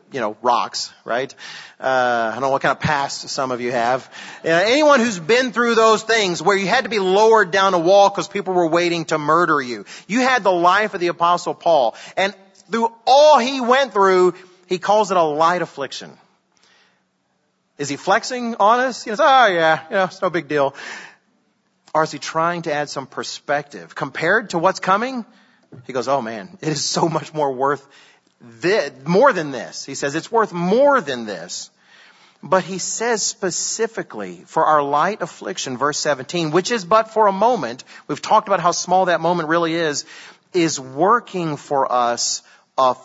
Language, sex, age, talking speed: English, male, 40-59, 190 wpm